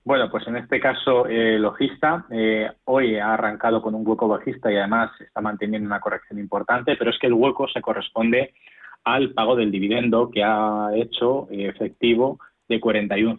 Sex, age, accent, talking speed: male, 20-39, Spanish, 185 wpm